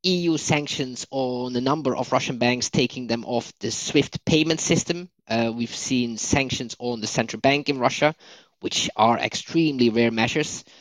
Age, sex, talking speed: 20-39, male, 165 wpm